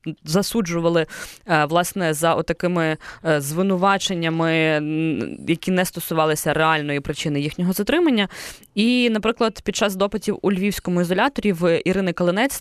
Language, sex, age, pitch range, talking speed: Ukrainian, female, 20-39, 155-195 Hz, 110 wpm